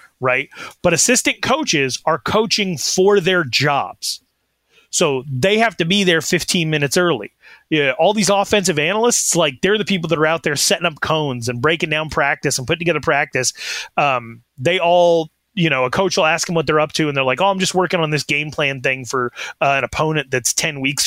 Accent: American